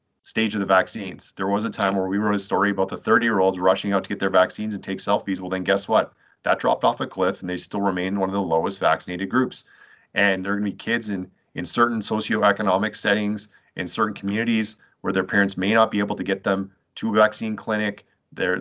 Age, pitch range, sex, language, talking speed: 30-49, 95-105 Hz, male, English, 240 wpm